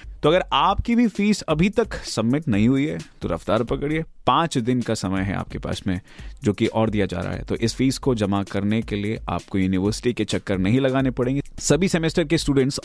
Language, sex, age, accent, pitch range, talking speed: Hindi, male, 30-49, native, 105-140 Hz, 225 wpm